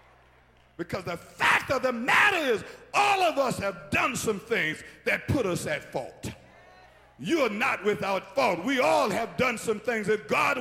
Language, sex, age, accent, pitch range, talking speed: English, male, 50-69, American, 180-280 Hz, 180 wpm